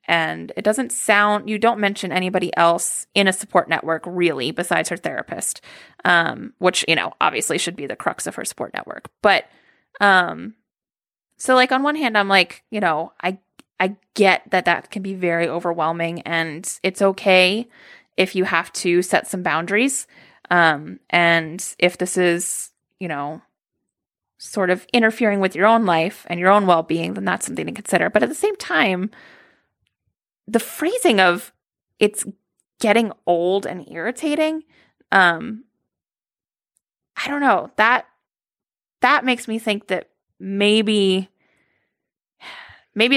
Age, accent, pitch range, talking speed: 20-39, American, 170-220 Hz, 155 wpm